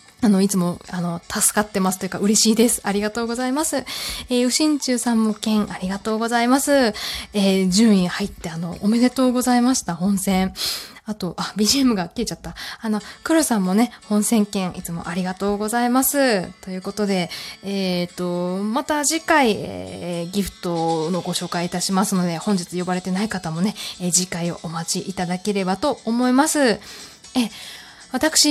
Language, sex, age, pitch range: Japanese, female, 20-39, 195-275 Hz